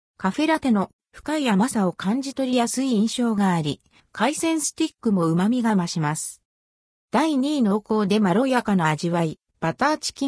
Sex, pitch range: female, 175-265 Hz